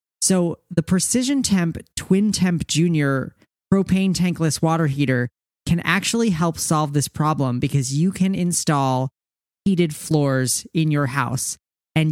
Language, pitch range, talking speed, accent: English, 145-185 Hz, 135 wpm, American